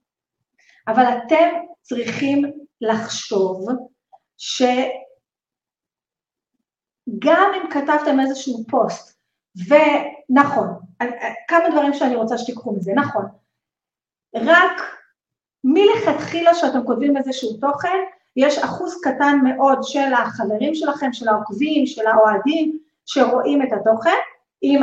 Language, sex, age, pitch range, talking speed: Hebrew, female, 30-49, 245-330 Hz, 90 wpm